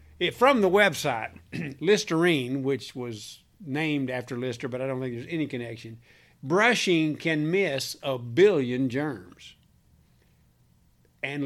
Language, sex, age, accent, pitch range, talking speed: English, male, 60-79, American, 120-190 Hz, 125 wpm